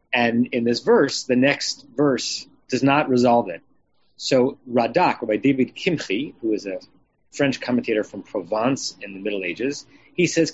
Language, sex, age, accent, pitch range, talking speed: English, male, 30-49, American, 115-155 Hz, 170 wpm